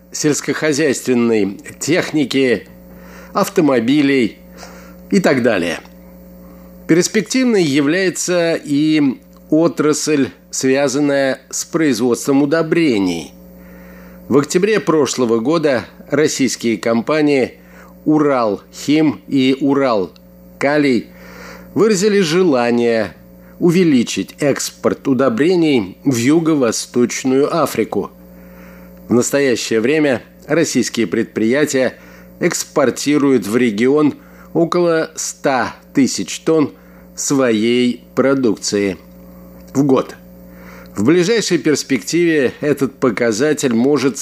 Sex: male